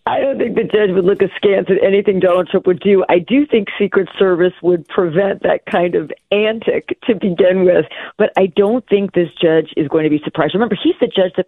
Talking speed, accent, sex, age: 230 wpm, American, female, 40-59